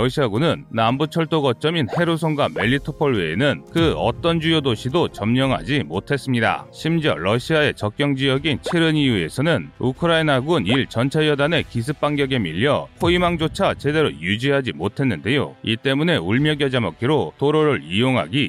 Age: 30-49